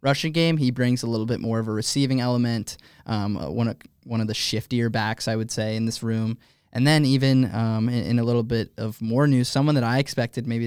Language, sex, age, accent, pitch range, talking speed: English, male, 20-39, American, 110-125 Hz, 240 wpm